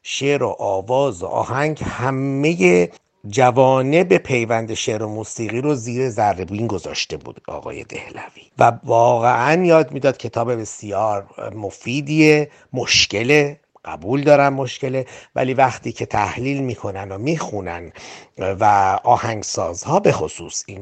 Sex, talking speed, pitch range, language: male, 120 wpm, 110-135 Hz, Persian